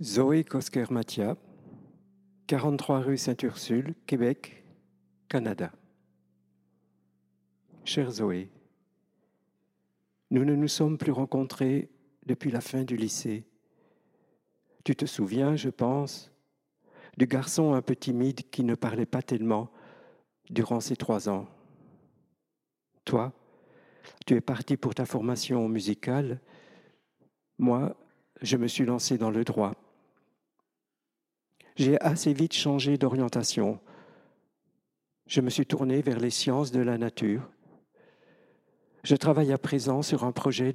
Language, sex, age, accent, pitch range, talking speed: French, male, 60-79, French, 115-140 Hz, 115 wpm